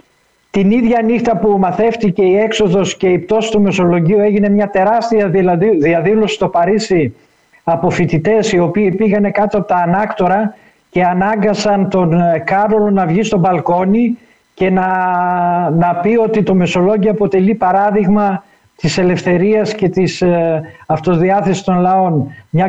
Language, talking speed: Greek, 135 wpm